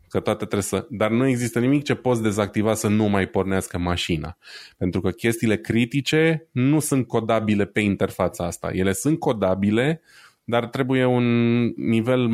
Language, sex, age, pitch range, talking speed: Romanian, male, 20-39, 100-120 Hz, 150 wpm